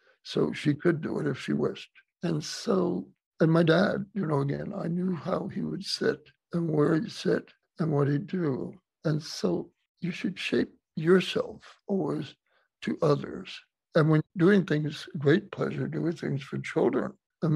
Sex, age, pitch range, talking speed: male, 60-79, 145-180 Hz, 170 wpm